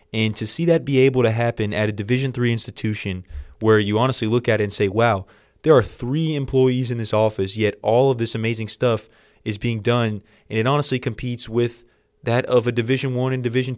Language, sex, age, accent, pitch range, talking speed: English, male, 20-39, American, 105-125 Hz, 220 wpm